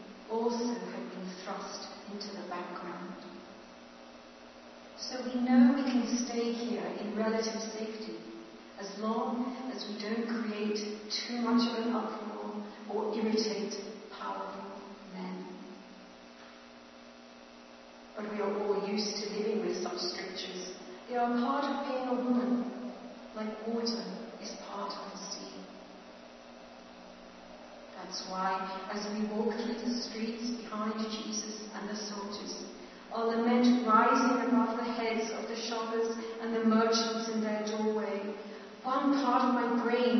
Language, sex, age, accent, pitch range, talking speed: English, female, 40-59, British, 200-235 Hz, 135 wpm